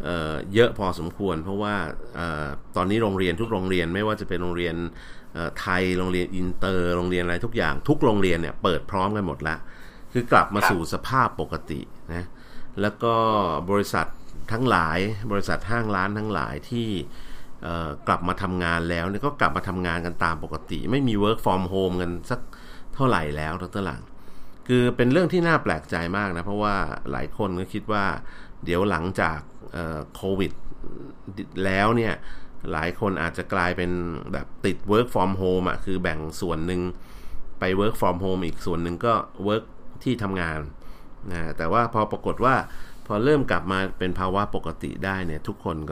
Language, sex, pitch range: Thai, male, 85-105 Hz